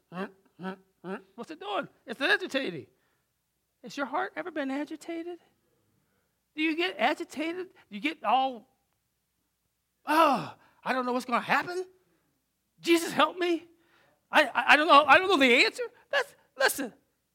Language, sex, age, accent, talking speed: English, male, 40-59, American, 155 wpm